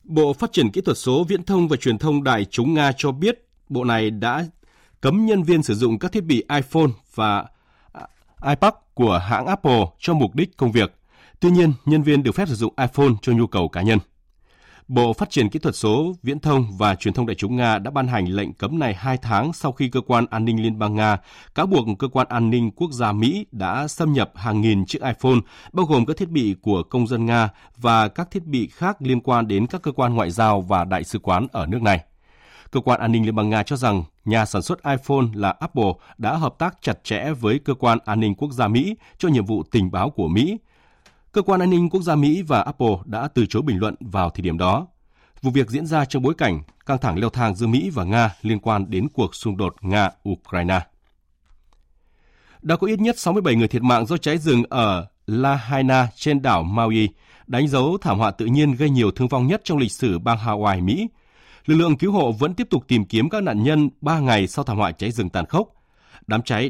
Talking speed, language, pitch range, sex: 235 wpm, Vietnamese, 105-145 Hz, male